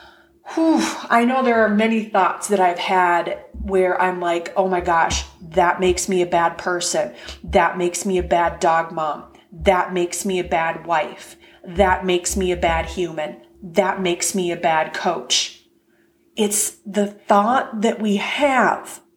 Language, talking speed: English, 165 wpm